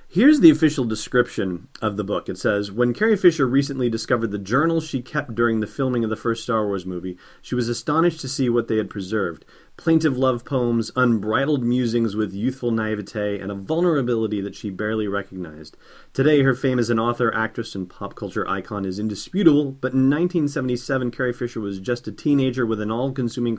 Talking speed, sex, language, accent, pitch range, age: 195 wpm, male, English, American, 105-135 Hz, 30-49